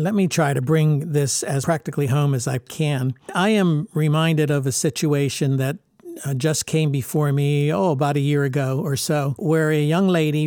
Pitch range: 145-170 Hz